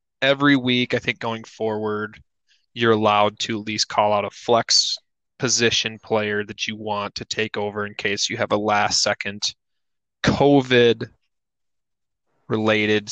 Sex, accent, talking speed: male, American, 140 wpm